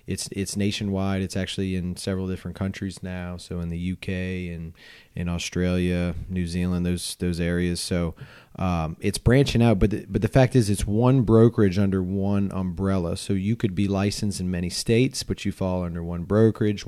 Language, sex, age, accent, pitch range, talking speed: English, male, 30-49, American, 90-110 Hz, 190 wpm